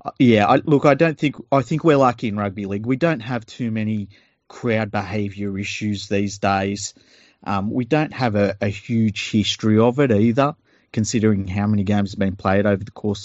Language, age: English, 30-49